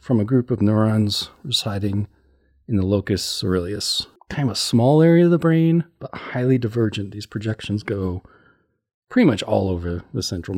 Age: 40-59